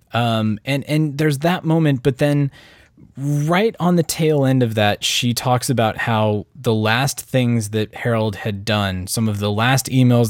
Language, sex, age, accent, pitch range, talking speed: English, male, 20-39, American, 105-145 Hz, 180 wpm